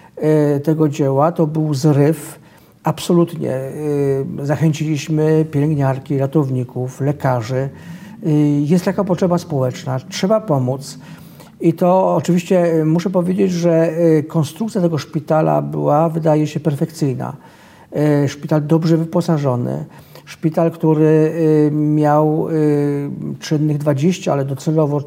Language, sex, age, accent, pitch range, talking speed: Polish, male, 50-69, native, 150-175 Hz, 95 wpm